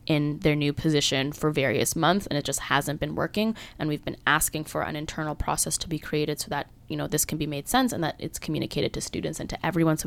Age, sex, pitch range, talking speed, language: 20-39, female, 145-170 Hz, 255 wpm, English